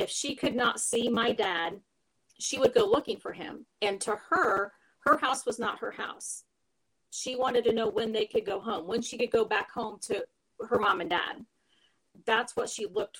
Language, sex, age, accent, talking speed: English, female, 40-59, American, 210 wpm